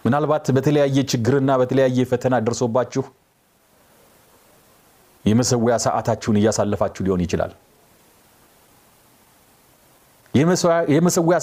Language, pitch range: Amharic, 135-205 Hz